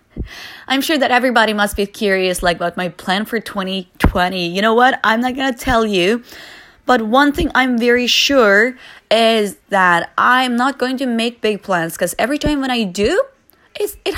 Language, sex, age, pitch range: Chinese, female, 20-39, 175-250 Hz